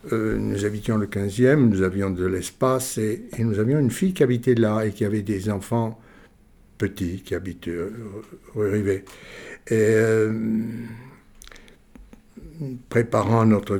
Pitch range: 100-130 Hz